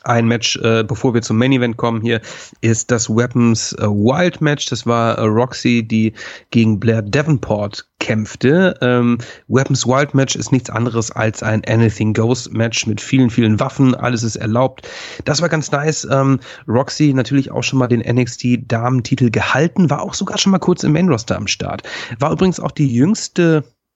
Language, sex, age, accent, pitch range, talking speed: German, male, 30-49, German, 115-145 Hz, 170 wpm